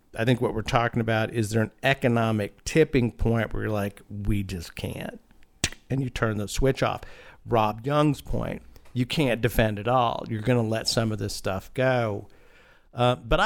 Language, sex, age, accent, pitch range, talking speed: English, male, 50-69, American, 115-140 Hz, 190 wpm